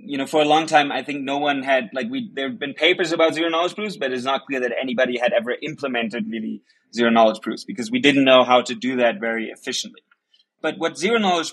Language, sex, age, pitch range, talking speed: English, male, 20-39, 135-190 Hz, 250 wpm